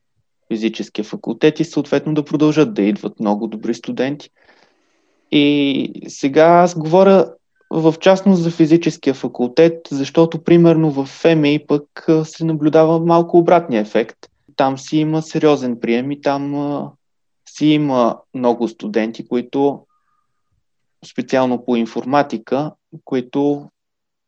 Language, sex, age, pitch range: Bulgarian, male, 20-39, 120-160 Hz